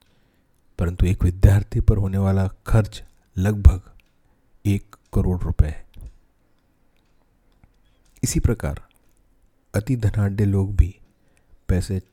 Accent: native